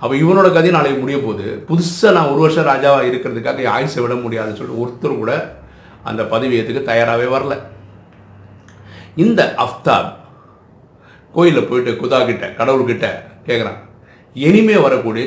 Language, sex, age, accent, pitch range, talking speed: Tamil, male, 50-69, native, 105-135 Hz, 120 wpm